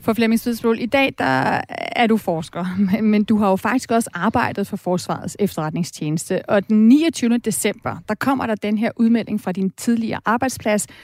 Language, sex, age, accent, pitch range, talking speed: Danish, female, 30-49, native, 210-255 Hz, 175 wpm